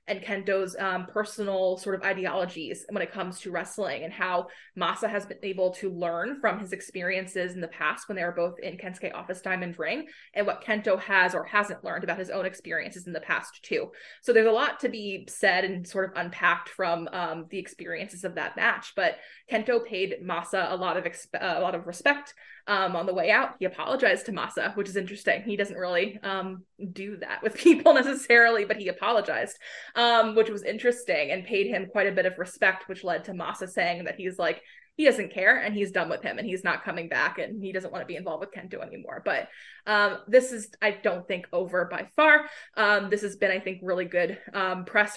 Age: 20-39